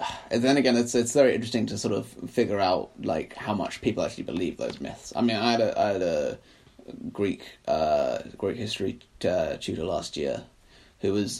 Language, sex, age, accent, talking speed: English, male, 20-39, British, 205 wpm